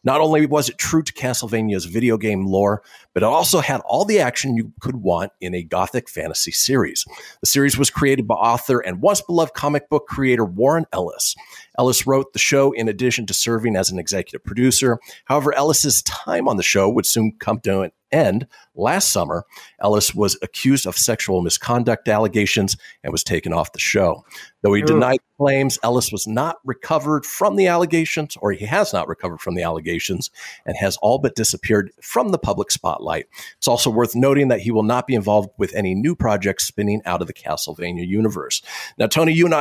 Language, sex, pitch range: English, male, 100-135 Hz